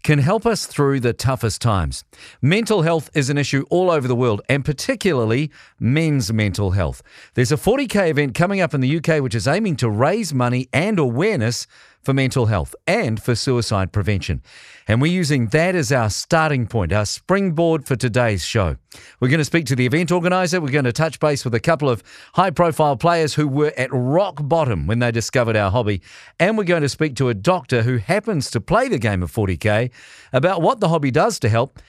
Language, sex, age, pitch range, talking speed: English, male, 50-69, 120-160 Hz, 205 wpm